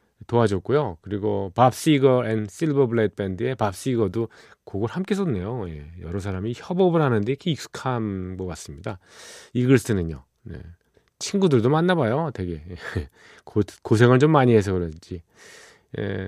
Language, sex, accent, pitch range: Korean, male, native, 100-145 Hz